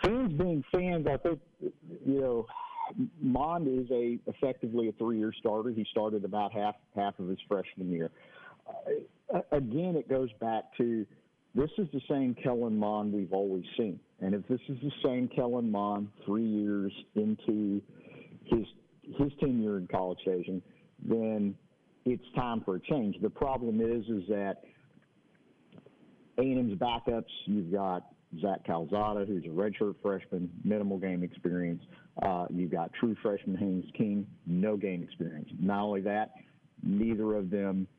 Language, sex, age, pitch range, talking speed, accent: English, male, 50-69, 95-125 Hz, 150 wpm, American